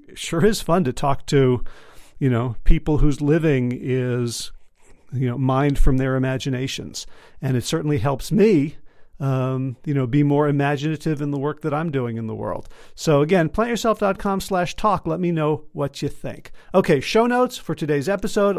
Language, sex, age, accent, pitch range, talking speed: English, male, 40-59, American, 140-180 Hz, 180 wpm